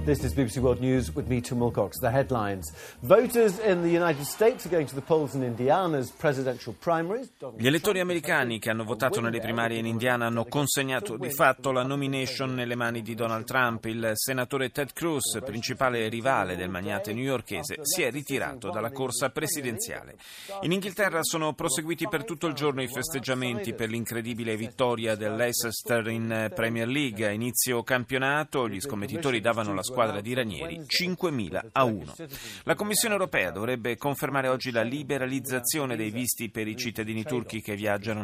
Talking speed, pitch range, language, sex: 170 wpm, 110-145 Hz, Italian, male